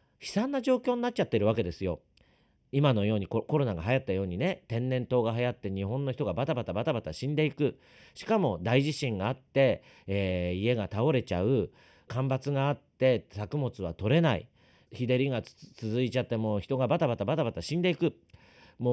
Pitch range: 120-180 Hz